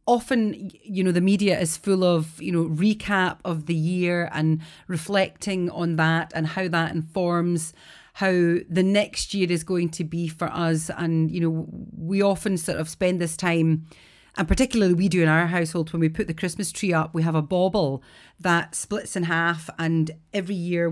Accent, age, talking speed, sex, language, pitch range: British, 30-49, 190 wpm, female, English, 165-195 Hz